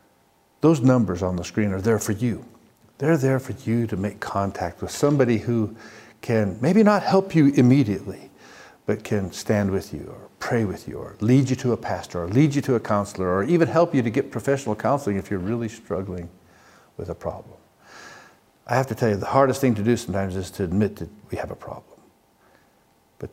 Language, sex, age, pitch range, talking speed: English, male, 50-69, 100-120 Hz, 210 wpm